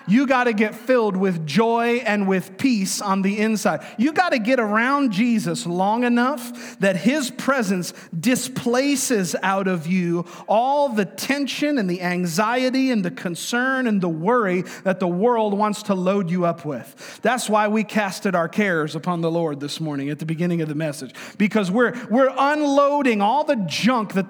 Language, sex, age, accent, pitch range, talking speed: English, male, 40-59, American, 175-240 Hz, 180 wpm